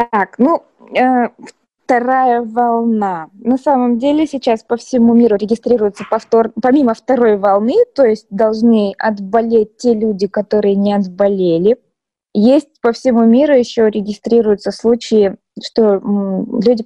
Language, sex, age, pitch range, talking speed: Russian, female, 20-39, 205-245 Hz, 125 wpm